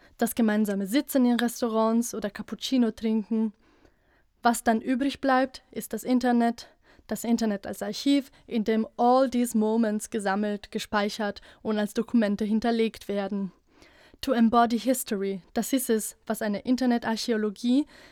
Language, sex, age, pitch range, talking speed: German, female, 20-39, 220-255 Hz, 130 wpm